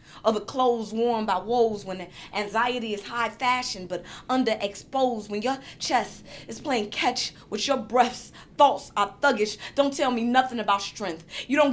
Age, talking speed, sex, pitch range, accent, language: 20-39, 170 wpm, female, 210-260 Hz, American, English